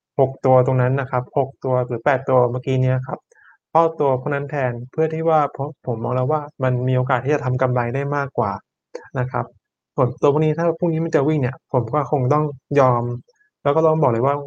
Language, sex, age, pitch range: Thai, male, 20-39, 130-155 Hz